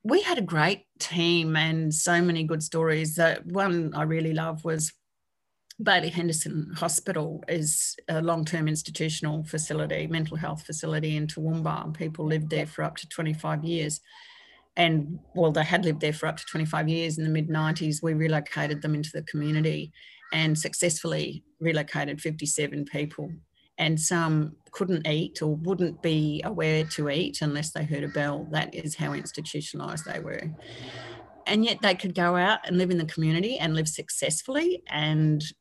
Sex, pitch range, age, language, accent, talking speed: female, 155-170 Hz, 40-59, English, Australian, 170 wpm